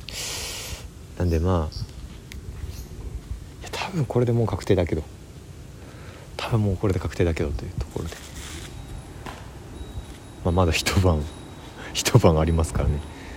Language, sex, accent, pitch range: Japanese, male, native, 75-90 Hz